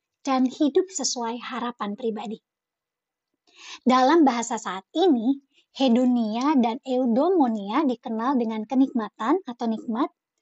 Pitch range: 235-310 Hz